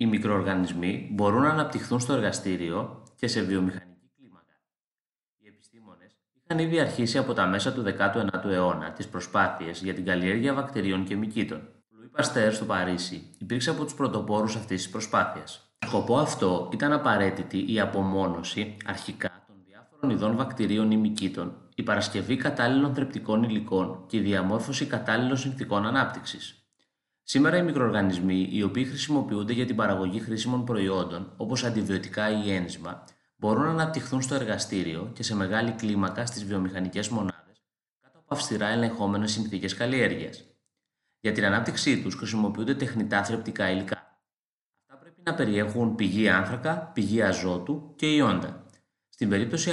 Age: 30-49